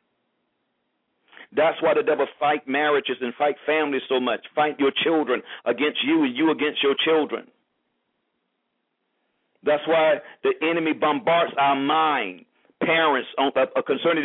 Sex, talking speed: male, 125 wpm